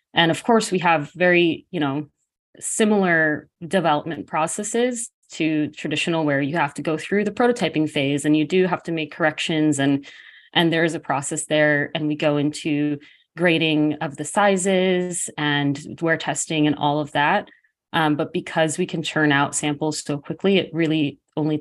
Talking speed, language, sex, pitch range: 175 wpm, English, female, 150-170 Hz